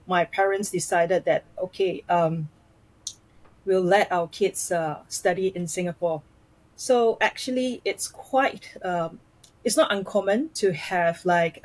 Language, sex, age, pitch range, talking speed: English, female, 30-49, 170-200 Hz, 125 wpm